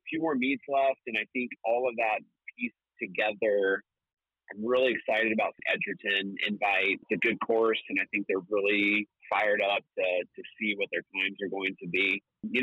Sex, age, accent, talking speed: male, 30-49, American, 195 wpm